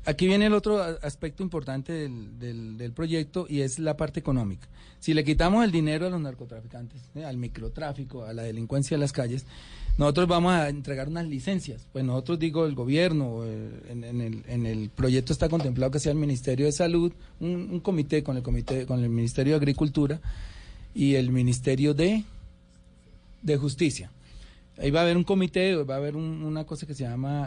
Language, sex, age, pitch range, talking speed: Spanish, male, 40-59, 125-165 Hz, 195 wpm